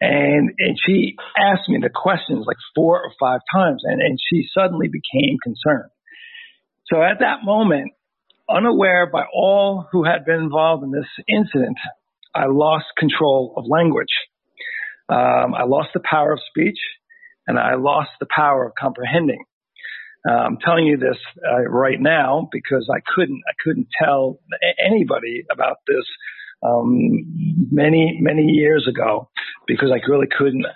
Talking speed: 150 wpm